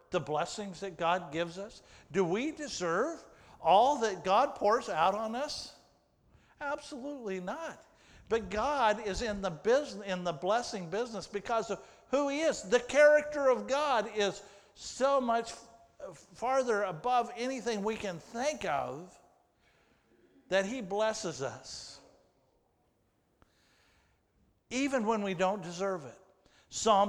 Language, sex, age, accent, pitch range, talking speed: English, male, 60-79, American, 175-245 Hz, 130 wpm